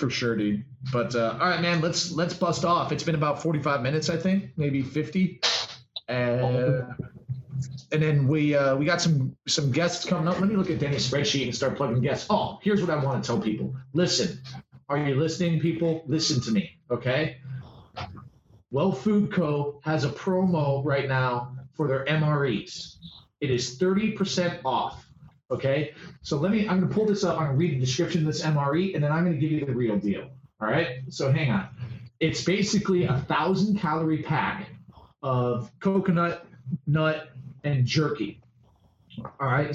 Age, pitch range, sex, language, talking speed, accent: 30-49, 130-170 Hz, male, English, 185 wpm, American